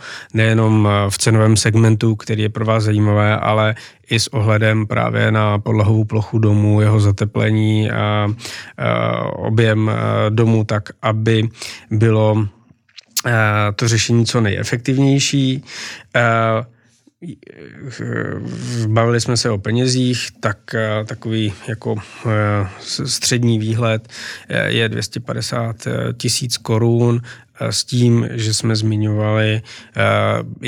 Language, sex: Czech, male